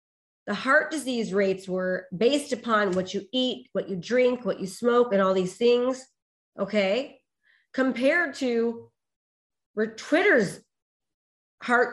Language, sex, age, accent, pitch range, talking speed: English, female, 30-49, American, 190-245 Hz, 125 wpm